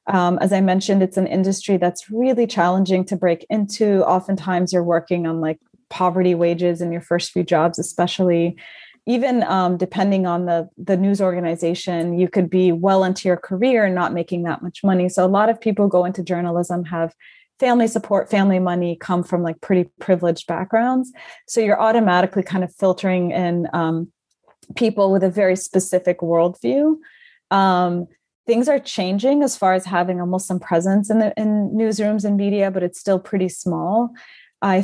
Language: English